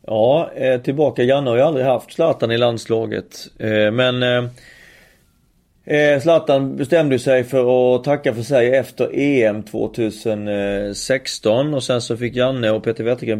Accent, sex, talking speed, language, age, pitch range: native, male, 135 wpm, Swedish, 30-49, 110-130 Hz